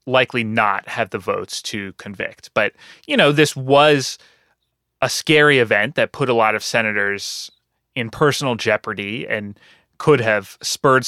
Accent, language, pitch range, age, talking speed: American, English, 110-145 Hz, 30-49, 150 wpm